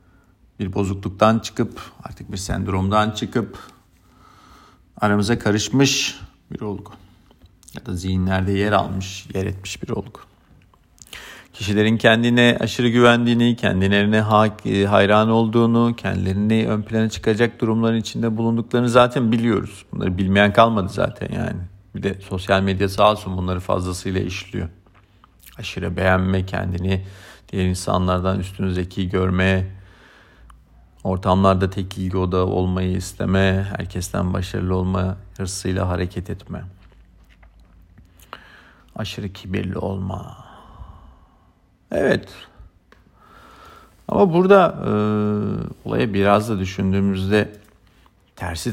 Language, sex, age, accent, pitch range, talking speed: Turkish, male, 50-69, native, 95-105 Hz, 100 wpm